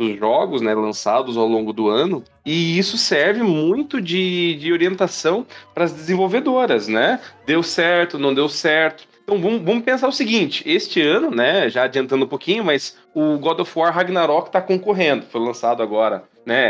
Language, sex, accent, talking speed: Portuguese, male, Brazilian, 170 wpm